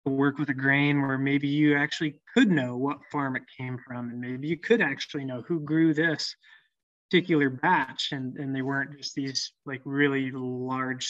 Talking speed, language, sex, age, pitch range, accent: 190 wpm, English, male, 20-39, 130-155 Hz, American